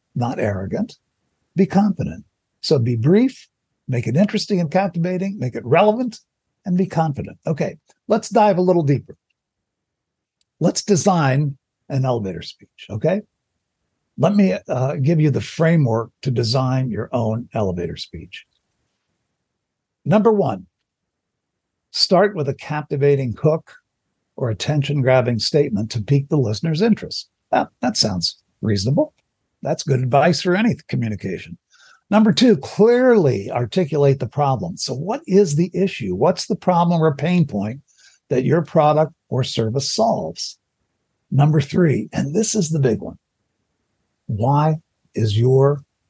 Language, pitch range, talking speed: English, 120-180 Hz, 130 wpm